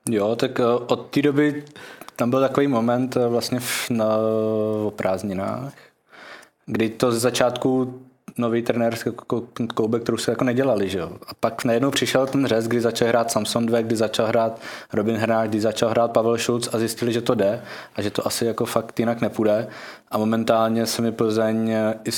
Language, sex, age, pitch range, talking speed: Czech, male, 20-39, 110-120 Hz, 175 wpm